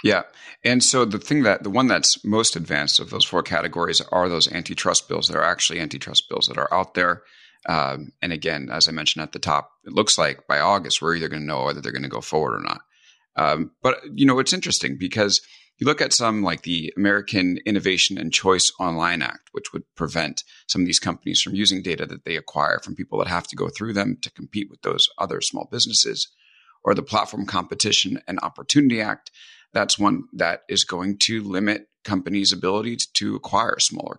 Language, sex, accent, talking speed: English, male, American, 210 wpm